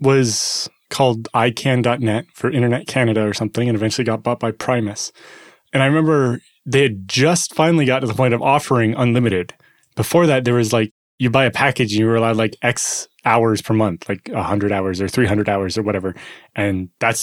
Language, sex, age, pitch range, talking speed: English, male, 20-39, 110-135 Hz, 195 wpm